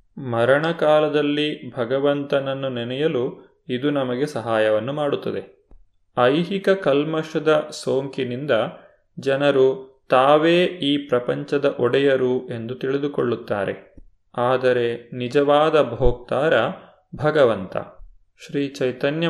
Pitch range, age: 120-145 Hz, 30-49